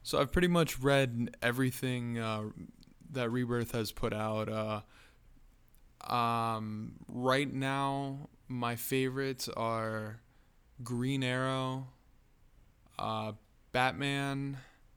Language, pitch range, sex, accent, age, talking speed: English, 115-130 Hz, male, American, 20-39, 90 wpm